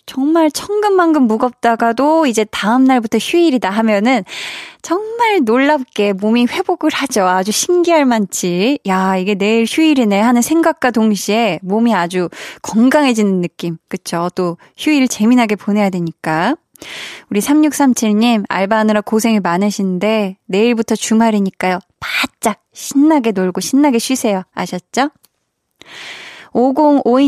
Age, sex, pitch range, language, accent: 20-39, female, 195-270 Hz, Korean, native